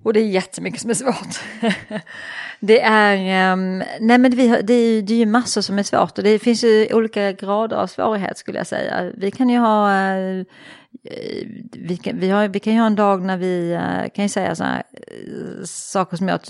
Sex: female